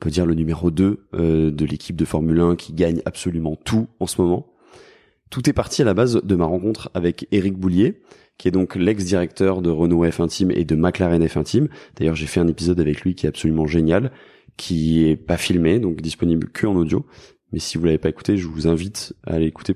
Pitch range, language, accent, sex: 85-100 Hz, French, French, male